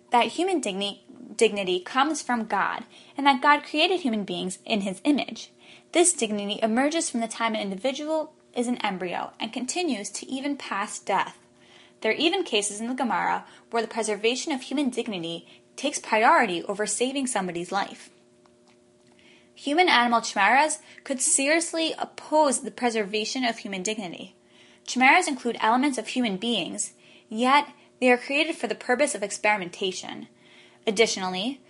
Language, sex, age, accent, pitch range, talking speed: English, female, 10-29, American, 205-280 Hz, 145 wpm